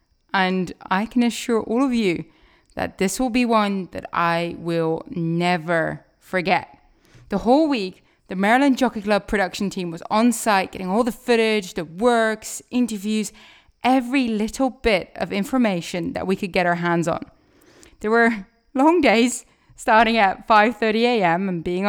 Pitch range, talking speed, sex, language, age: 180-240 Hz, 155 wpm, female, English, 20-39